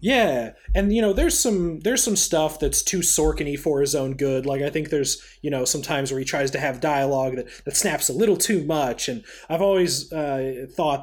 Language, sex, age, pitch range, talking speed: English, male, 30-49, 130-165 Hz, 225 wpm